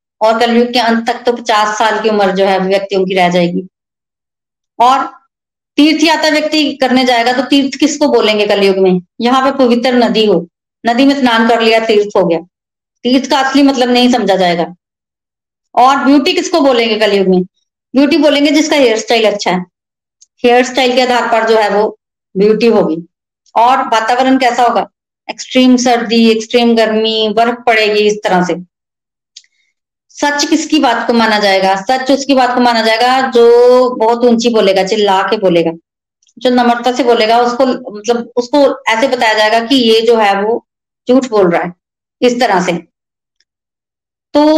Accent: native